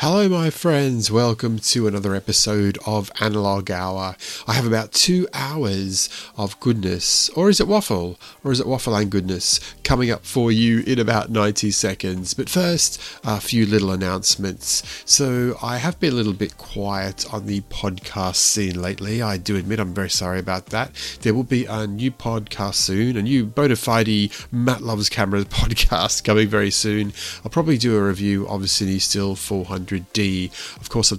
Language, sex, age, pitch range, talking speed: English, male, 30-49, 95-115 Hz, 175 wpm